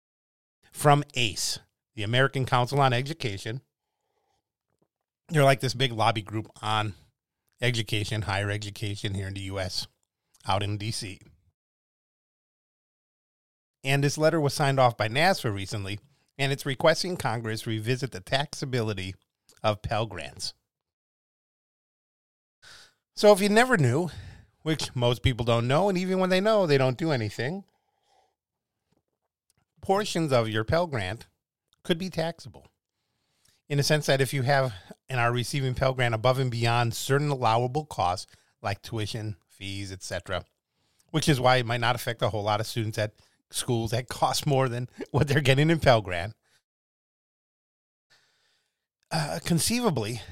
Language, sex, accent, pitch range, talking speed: English, male, American, 110-145 Hz, 140 wpm